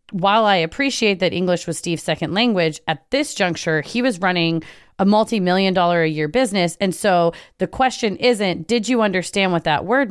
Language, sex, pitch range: English, female, 170-215 Hz